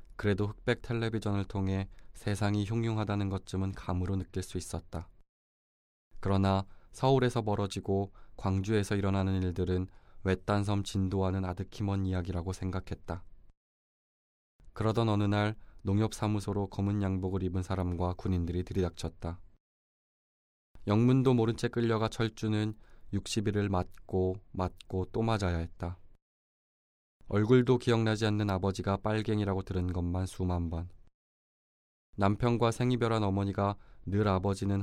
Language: Korean